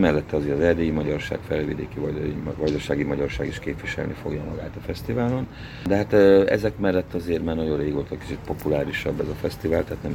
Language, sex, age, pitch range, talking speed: Hungarian, male, 40-59, 75-90 Hz, 175 wpm